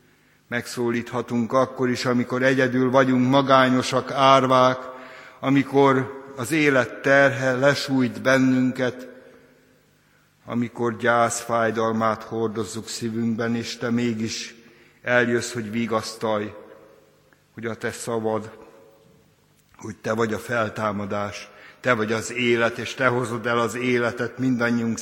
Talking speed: 110 wpm